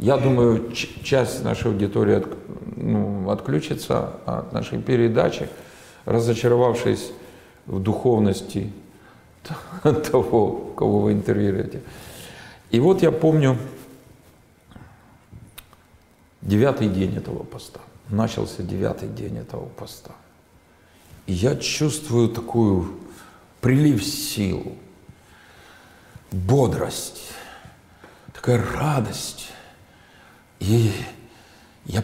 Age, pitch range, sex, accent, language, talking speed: 50-69, 100-125 Hz, male, native, Russian, 75 wpm